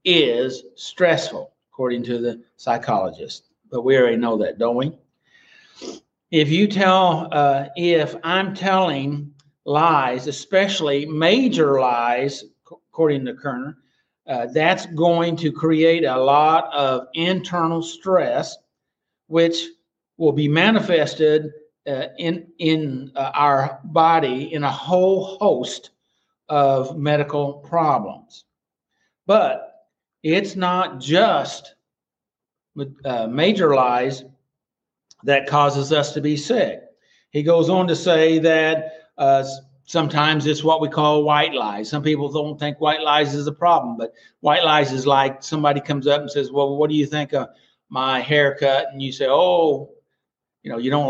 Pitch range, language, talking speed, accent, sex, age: 135-165 Hz, English, 135 wpm, American, male, 60-79